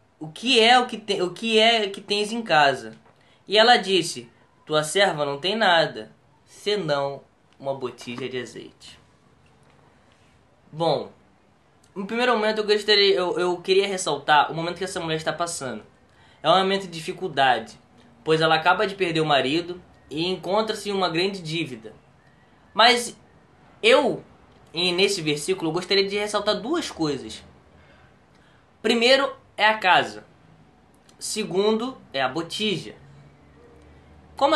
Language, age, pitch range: Portuguese, 10-29, 155-220 Hz